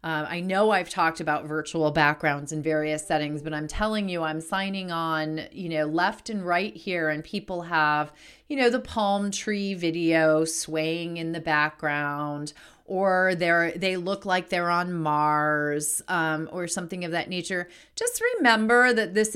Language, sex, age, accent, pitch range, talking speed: English, female, 30-49, American, 155-195 Hz, 165 wpm